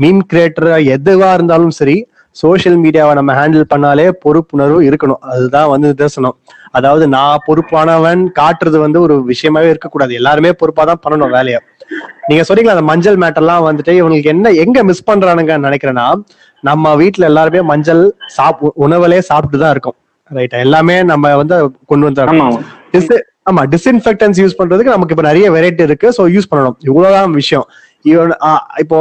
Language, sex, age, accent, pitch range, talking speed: Tamil, male, 20-39, native, 145-180 Hz, 110 wpm